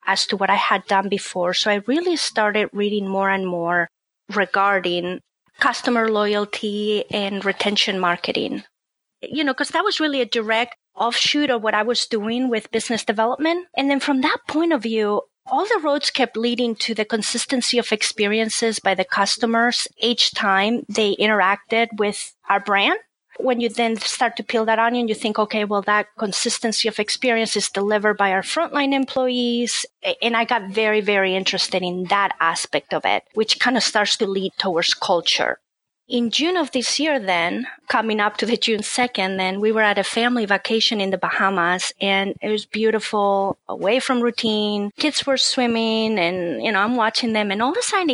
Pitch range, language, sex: 200-245 Hz, English, female